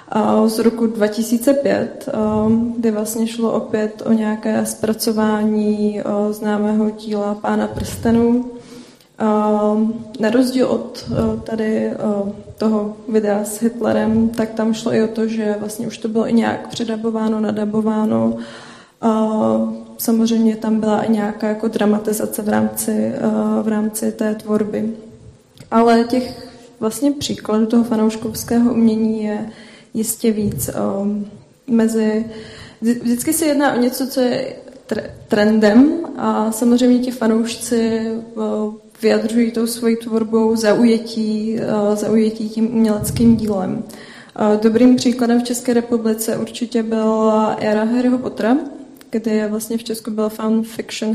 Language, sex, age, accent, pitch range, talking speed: Czech, female, 20-39, native, 215-230 Hz, 115 wpm